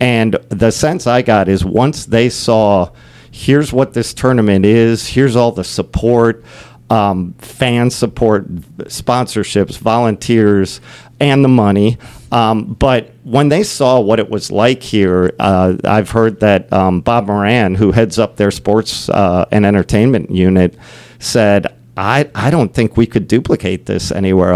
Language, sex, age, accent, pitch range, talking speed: English, male, 50-69, American, 100-120 Hz, 150 wpm